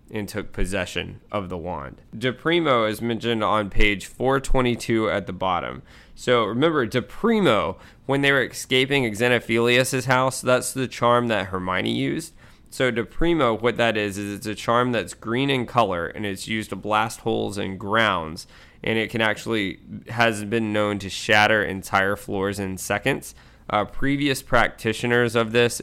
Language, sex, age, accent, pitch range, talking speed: English, male, 20-39, American, 100-120 Hz, 160 wpm